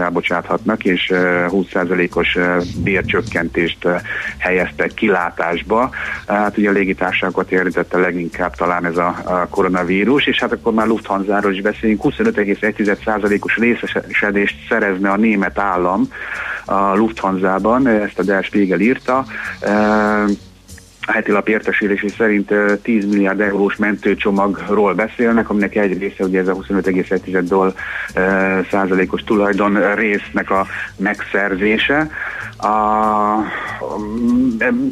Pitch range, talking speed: 95-110 Hz, 105 wpm